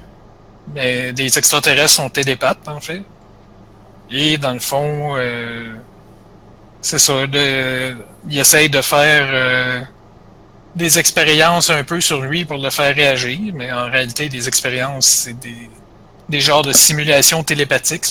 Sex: male